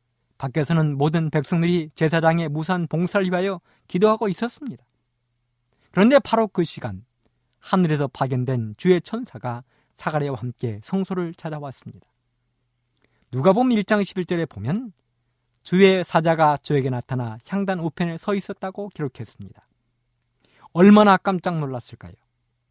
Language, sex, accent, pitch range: Korean, male, native, 120-180 Hz